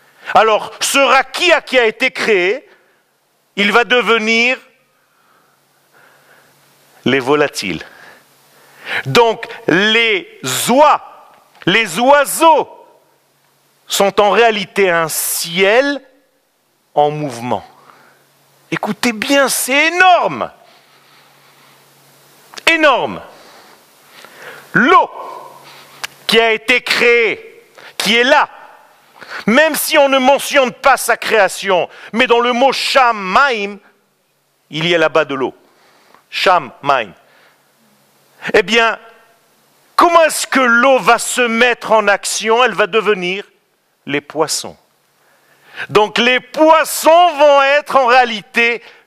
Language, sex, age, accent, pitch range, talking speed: French, male, 50-69, French, 210-310 Hz, 100 wpm